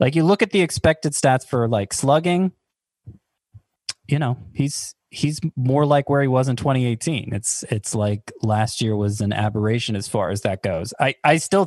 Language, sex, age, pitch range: English, male, 20-39, 105-140 Hz